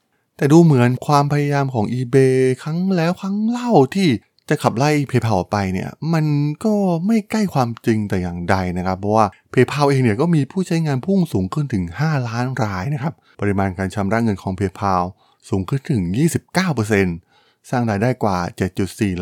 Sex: male